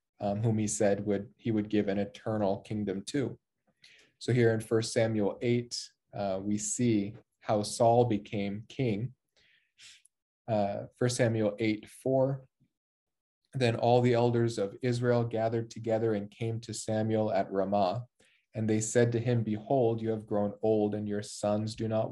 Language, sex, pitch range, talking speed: English, male, 105-120 Hz, 160 wpm